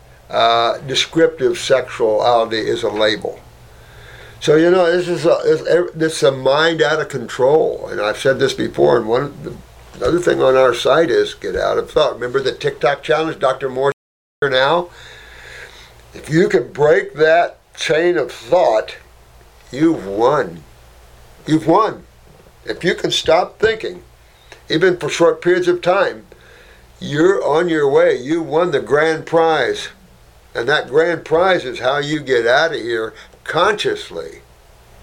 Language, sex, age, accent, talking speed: English, male, 60-79, American, 150 wpm